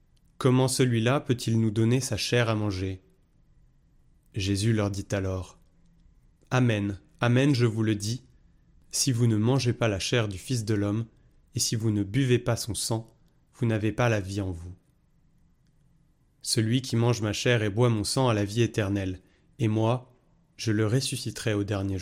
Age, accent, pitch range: 30-49, French, 105-130 Hz